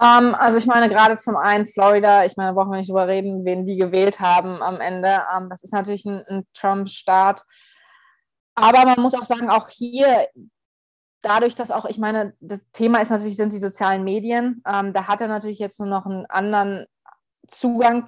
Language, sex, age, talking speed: German, female, 20-39, 190 wpm